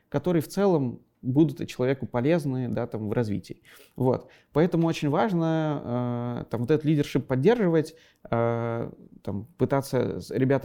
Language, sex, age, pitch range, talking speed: Russian, male, 30-49, 115-150 Hz, 135 wpm